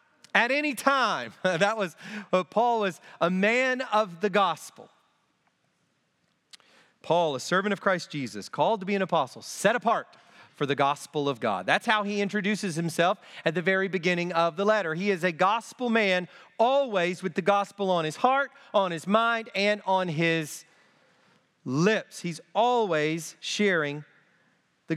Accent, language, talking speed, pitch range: American, English, 155 wpm, 185-240 Hz